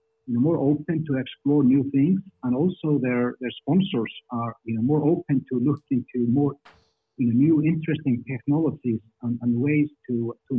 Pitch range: 120-155 Hz